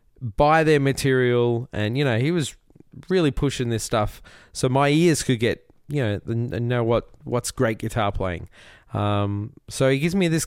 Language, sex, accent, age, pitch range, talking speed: English, male, Australian, 20-39, 110-140 Hz, 180 wpm